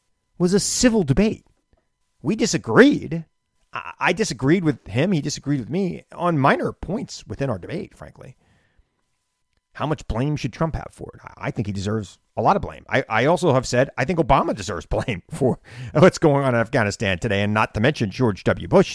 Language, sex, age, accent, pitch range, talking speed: English, male, 40-59, American, 115-165 Hz, 200 wpm